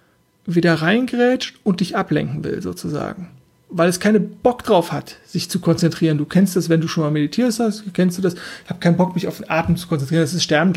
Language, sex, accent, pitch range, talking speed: German, male, German, 170-215 Hz, 230 wpm